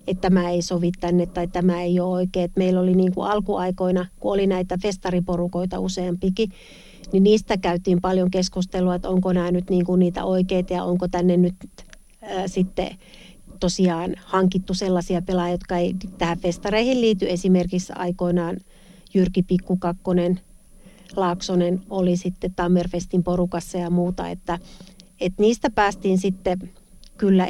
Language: Finnish